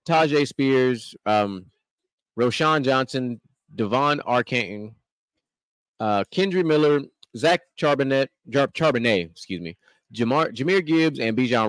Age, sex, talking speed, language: 30-49, male, 115 wpm, English